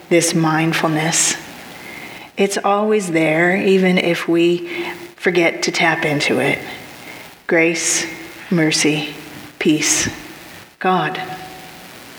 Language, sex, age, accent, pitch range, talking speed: English, female, 40-59, American, 170-215 Hz, 85 wpm